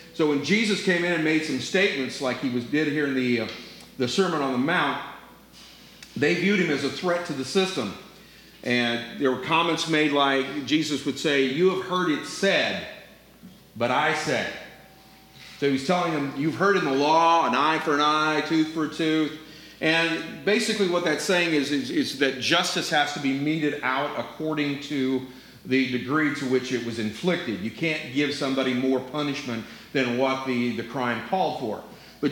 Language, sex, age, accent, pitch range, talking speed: English, male, 40-59, American, 140-175 Hz, 195 wpm